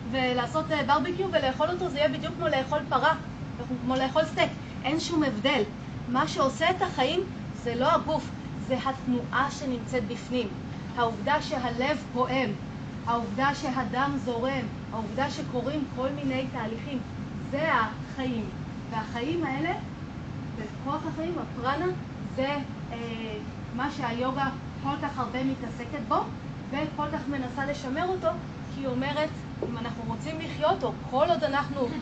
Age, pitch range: 30-49, 255-315 Hz